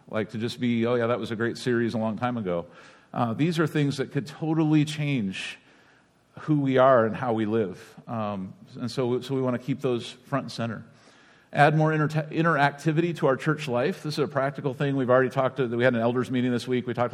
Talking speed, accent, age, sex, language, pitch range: 240 wpm, American, 50-69, male, English, 120-145 Hz